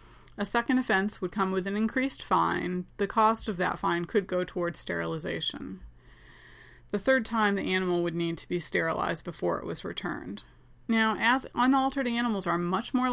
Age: 40-59